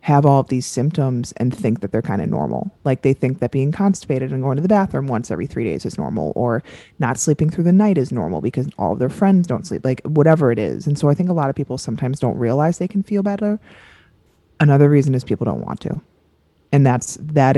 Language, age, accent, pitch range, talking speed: English, 20-39, American, 120-155 Hz, 250 wpm